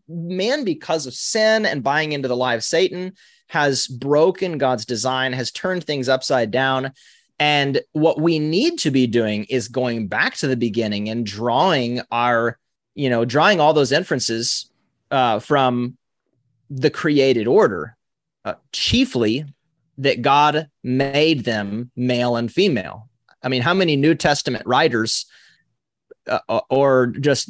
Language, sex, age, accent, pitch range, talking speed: English, male, 30-49, American, 120-155 Hz, 145 wpm